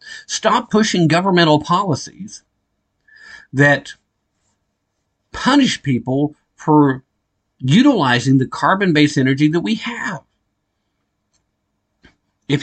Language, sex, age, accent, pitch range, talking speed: English, male, 50-69, American, 130-175 Hz, 75 wpm